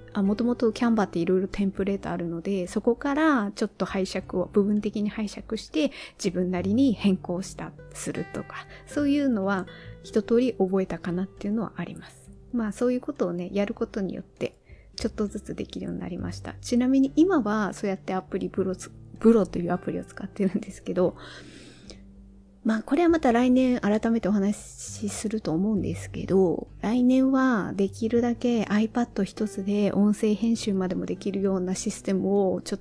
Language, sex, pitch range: Japanese, female, 185-230 Hz